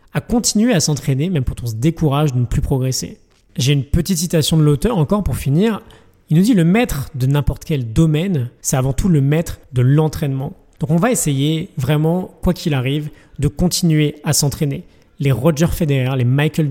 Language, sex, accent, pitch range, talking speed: French, male, French, 140-170 Hz, 205 wpm